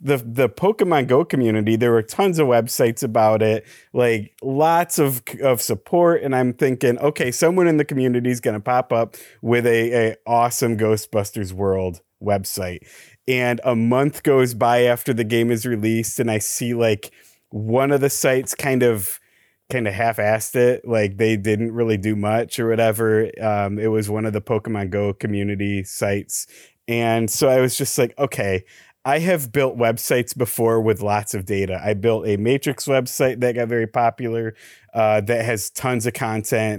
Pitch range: 110-125 Hz